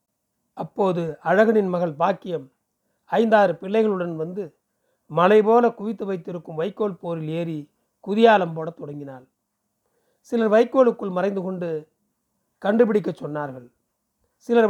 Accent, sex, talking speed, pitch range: native, male, 100 wpm, 170-220 Hz